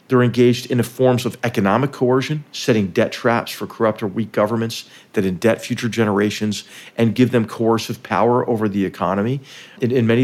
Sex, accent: male, American